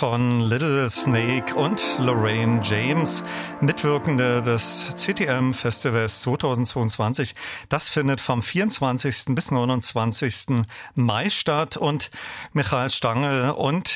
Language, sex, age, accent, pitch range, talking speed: German, male, 40-59, German, 120-145 Hz, 95 wpm